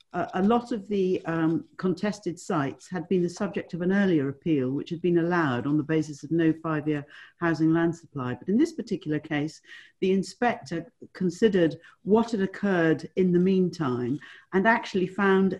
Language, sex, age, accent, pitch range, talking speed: English, female, 50-69, British, 155-185 Hz, 175 wpm